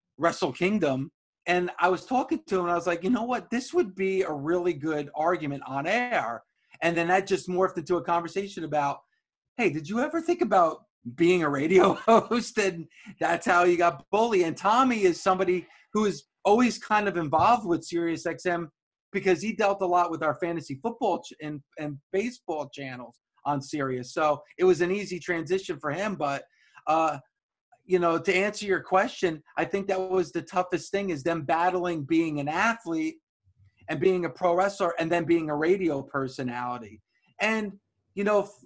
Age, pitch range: 30-49, 160-205 Hz